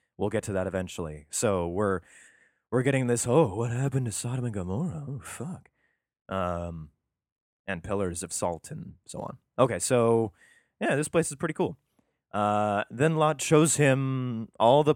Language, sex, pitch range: English, male, 100-130 Hz